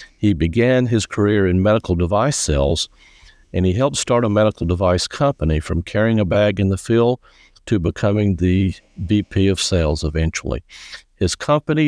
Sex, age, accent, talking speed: male, 60-79, American, 160 wpm